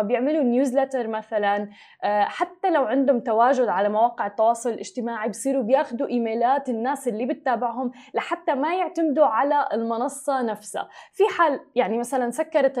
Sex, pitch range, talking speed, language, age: female, 235-285 Hz, 130 wpm, Arabic, 20-39